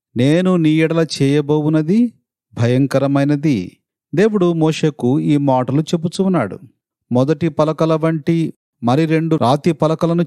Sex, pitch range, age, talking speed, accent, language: male, 140-180 Hz, 40-59, 100 wpm, native, Telugu